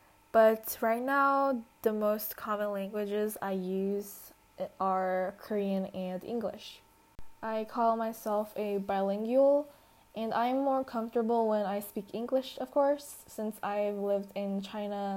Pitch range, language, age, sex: 195-230 Hz, Korean, 10-29, female